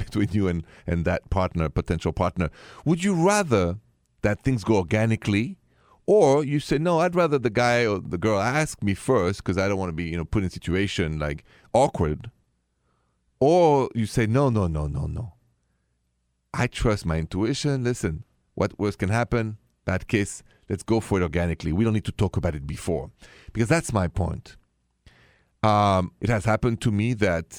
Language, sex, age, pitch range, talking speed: English, male, 40-59, 85-115 Hz, 185 wpm